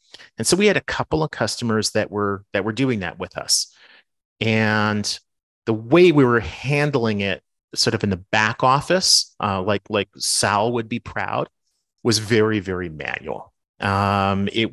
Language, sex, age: English, male, 40-59